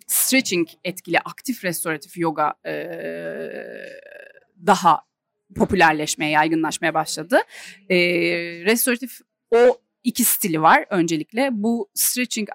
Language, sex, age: Turkish, female, 30-49